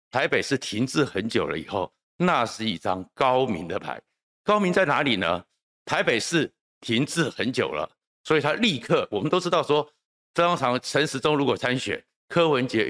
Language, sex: Chinese, male